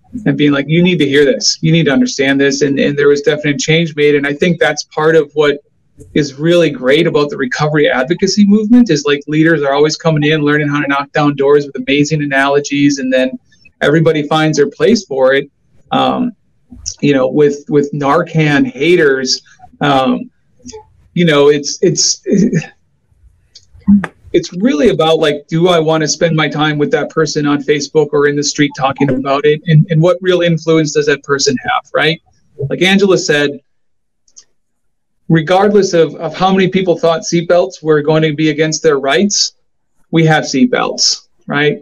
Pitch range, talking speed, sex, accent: 145-180 Hz, 180 wpm, male, American